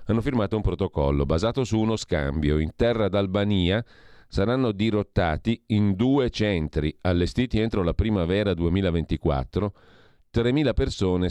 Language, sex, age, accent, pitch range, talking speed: Italian, male, 40-59, native, 80-110 Hz, 120 wpm